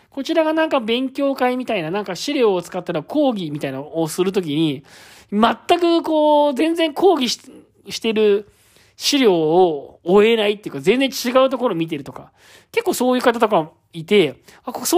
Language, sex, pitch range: Japanese, male, 165-260 Hz